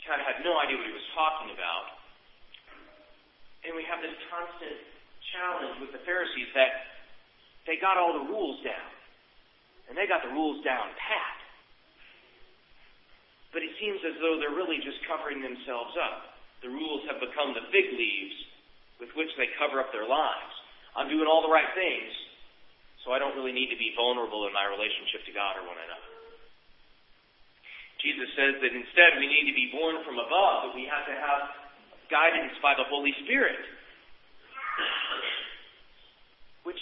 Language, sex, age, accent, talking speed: English, male, 40-59, American, 165 wpm